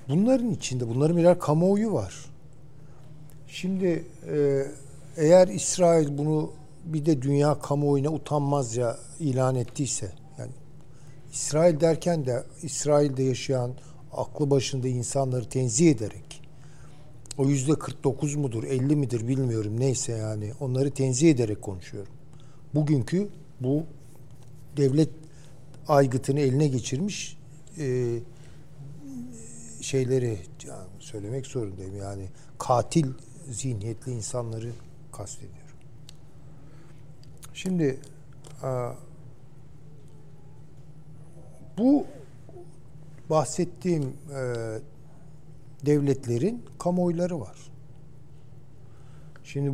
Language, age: Turkish, 60-79